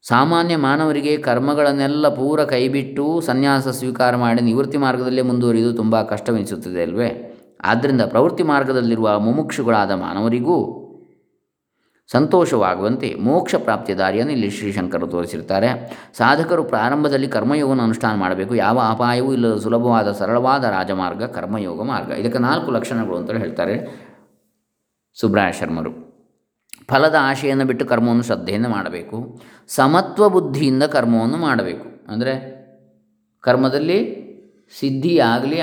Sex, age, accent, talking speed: male, 20-39, native, 100 wpm